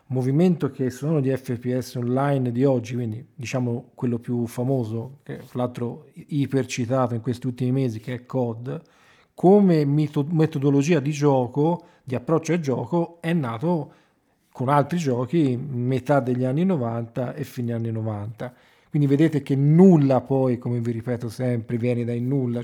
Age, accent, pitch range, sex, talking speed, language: 40-59, native, 125-145 Hz, male, 150 wpm, Italian